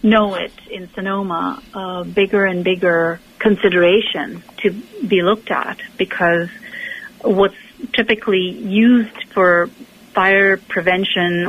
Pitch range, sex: 180-225 Hz, female